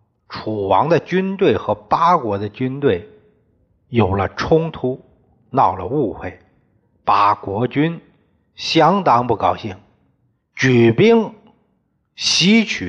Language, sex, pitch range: Chinese, male, 110-185 Hz